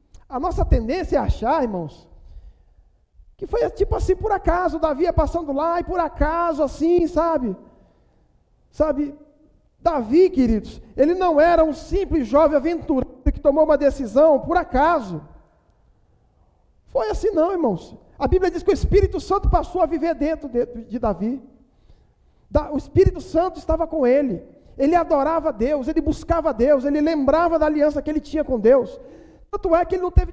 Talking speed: 160 wpm